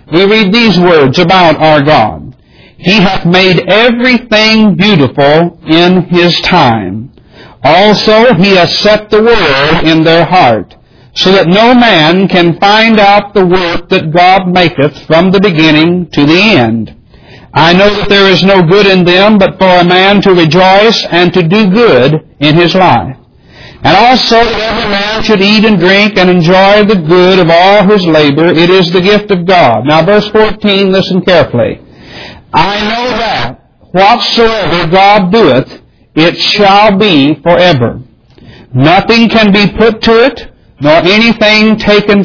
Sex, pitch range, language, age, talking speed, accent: male, 165-210 Hz, English, 60-79, 160 wpm, American